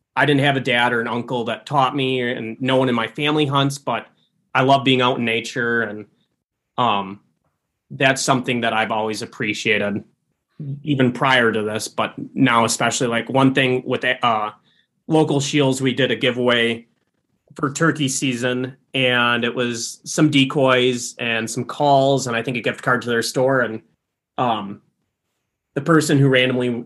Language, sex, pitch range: English, male, 115-135 Hz